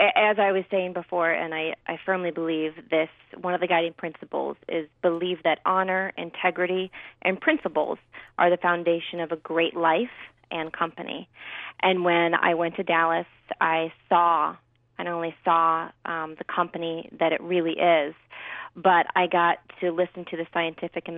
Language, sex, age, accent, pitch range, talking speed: English, female, 30-49, American, 165-185 Hz, 170 wpm